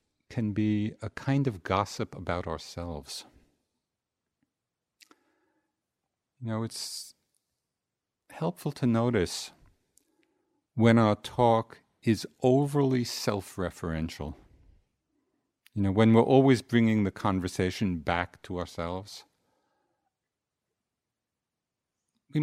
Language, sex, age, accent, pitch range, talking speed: English, male, 50-69, American, 90-125 Hz, 85 wpm